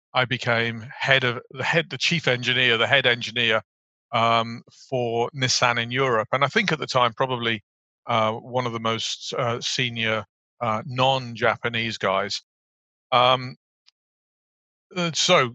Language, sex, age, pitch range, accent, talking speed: English, male, 40-59, 115-130 Hz, British, 140 wpm